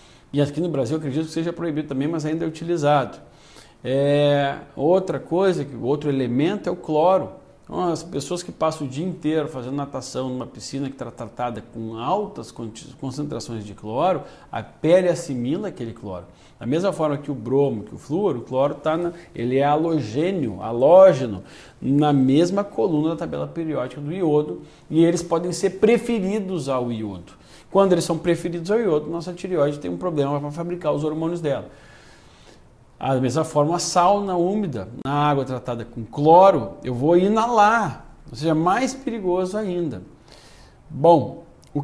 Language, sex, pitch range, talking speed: Portuguese, male, 125-170 Hz, 170 wpm